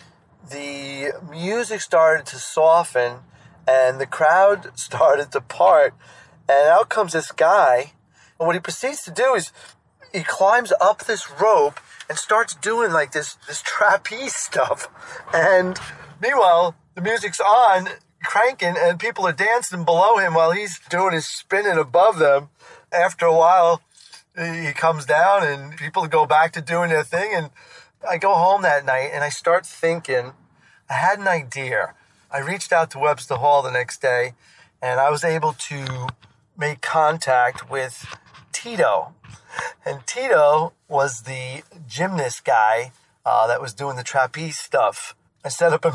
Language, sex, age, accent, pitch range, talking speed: English, male, 30-49, American, 135-175 Hz, 155 wpm